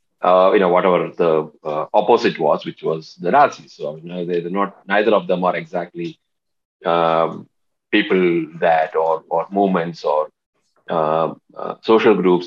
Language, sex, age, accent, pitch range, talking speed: Bengali, male, 30-49, native, 85-110 Hz, 170 wpm